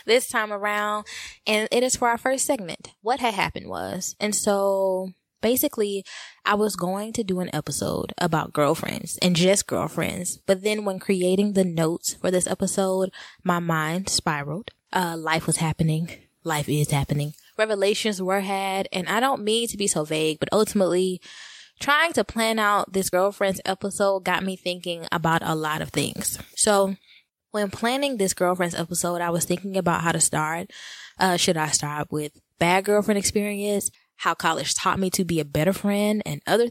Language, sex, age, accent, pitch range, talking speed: English, female, 10-29, American, 165-205 Hz, 175 wpm